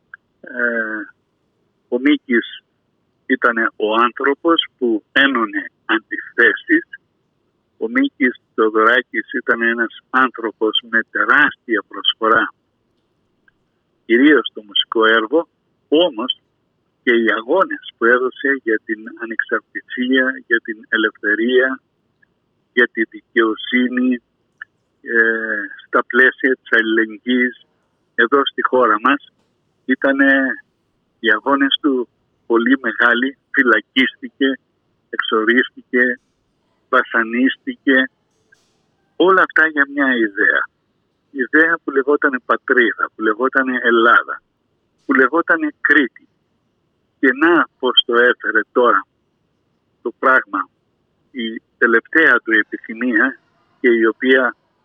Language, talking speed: Greek, 95 wpm